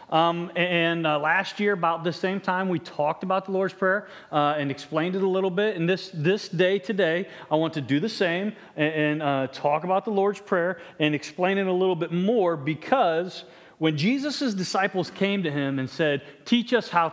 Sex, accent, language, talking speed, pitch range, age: male, American, English, 210 wpm, 155-200 Hz, 40-59